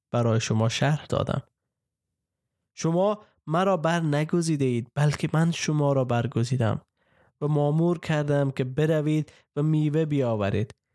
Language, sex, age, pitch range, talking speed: Persian, male, 20-39, 130-160 Hz, 115 wpm